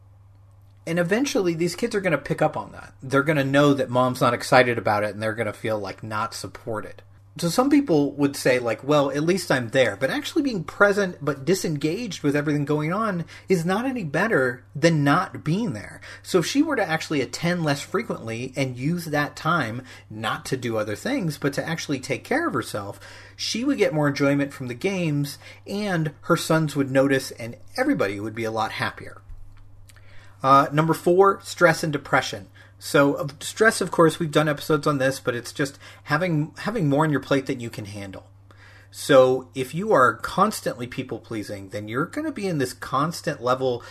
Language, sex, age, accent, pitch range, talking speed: English, male, 40-59, American, 110-160 Hz, 200 wpm